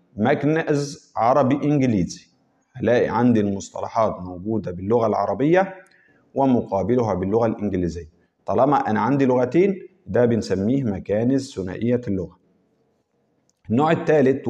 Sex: male